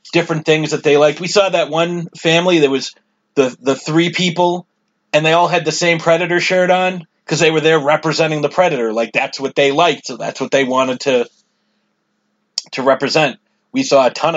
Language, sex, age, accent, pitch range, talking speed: English, male, 30-49, American, 120-160 Hz, 205 wpm